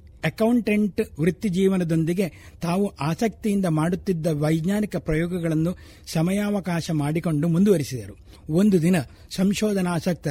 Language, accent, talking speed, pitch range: Kannada, native, 80 wpm, 155-185 Hz